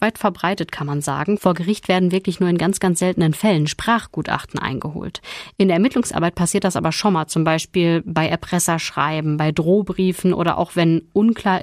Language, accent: German, German